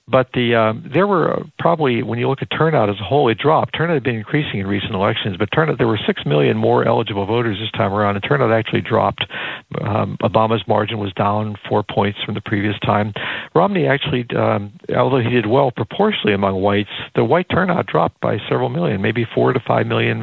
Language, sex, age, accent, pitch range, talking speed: English, male, 60-79, American, 105-125 Hz, 215 wpm